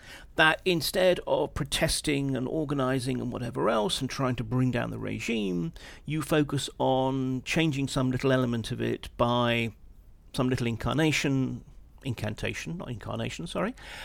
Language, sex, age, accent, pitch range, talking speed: English, male, 40-59, British, 125-160 Hz, 140 wpm